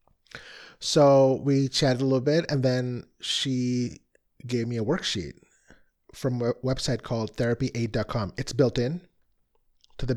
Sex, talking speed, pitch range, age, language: male, 135 wpm, 110-135 Hz, 30-49, English